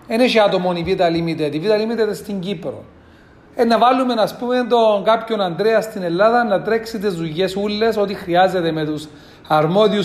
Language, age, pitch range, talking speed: Greek, 40-59, 170-220 Hz, 175 wpm